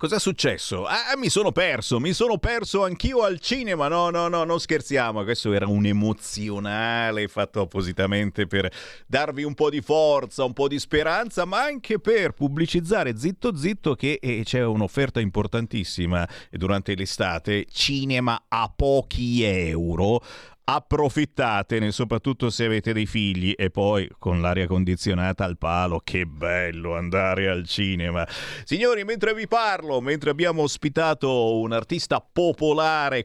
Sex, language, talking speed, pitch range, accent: male, Italian, 140 wpm, 100-165 Hz, native